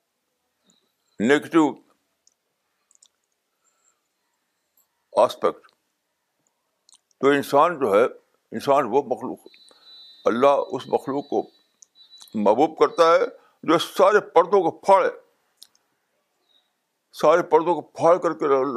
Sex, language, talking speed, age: male, Urdu, 85 wpm, 60-79